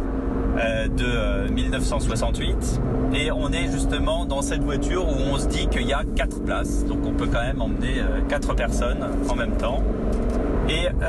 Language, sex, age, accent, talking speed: French, male, 30-49, French, 160 wpm